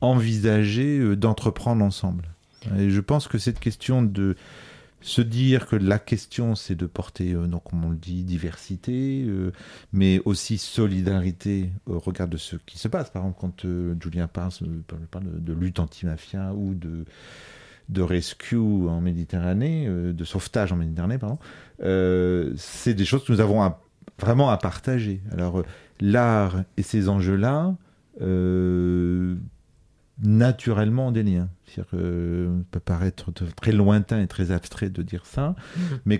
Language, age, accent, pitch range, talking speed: French, 40-59, French, 90-110 Hz, 160 wpm